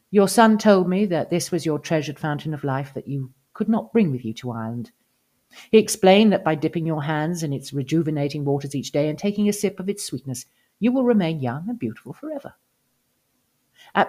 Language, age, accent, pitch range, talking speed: English, 50-69, British, 135-190 Hz, 210 wpm